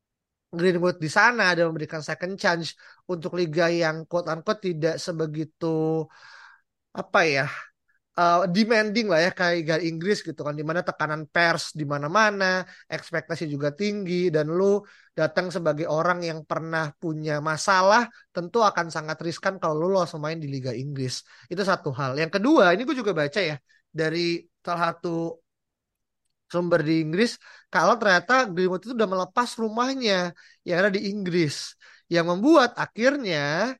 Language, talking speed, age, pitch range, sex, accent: Indonesian, 145 wpm, 20-39, 160-200 Hz, male, native